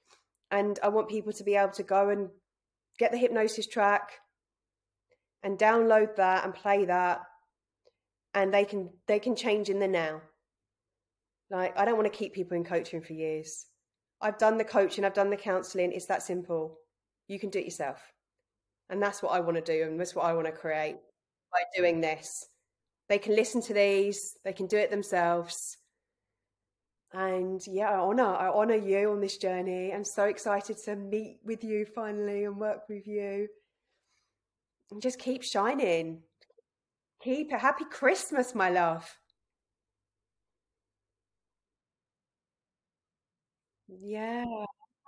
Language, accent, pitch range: English, British, 160-215 Hz